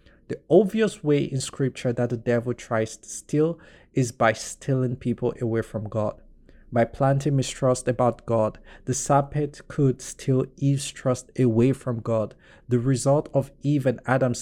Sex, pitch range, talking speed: male, 115-140 Hz, 160 wpm